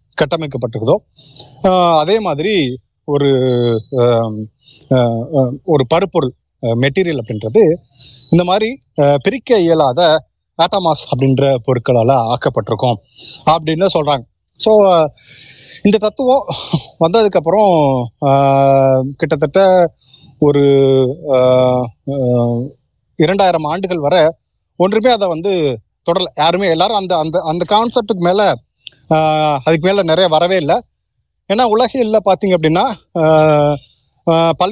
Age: 30-49